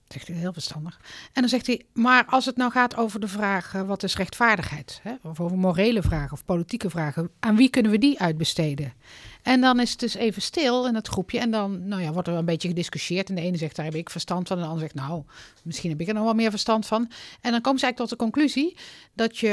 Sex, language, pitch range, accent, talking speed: female, Dutch, 170-235 Hz, Dutch, 265 wpm